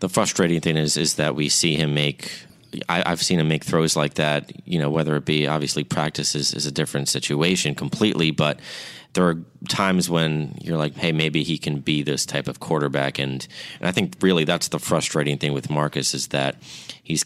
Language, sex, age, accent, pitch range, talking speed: English, male, 30-49, American, 75-80 Hz, 210 wpm